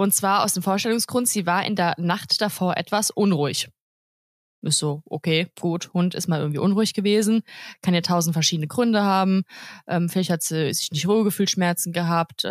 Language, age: German, 20-39